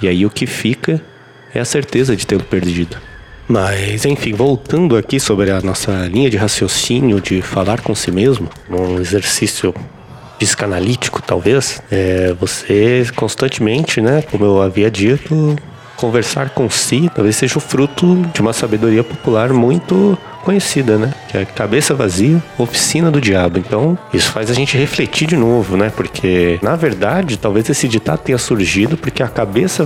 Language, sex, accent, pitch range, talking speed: Portuguese, male, Brazilian, 105-140 Hz, 160 wpm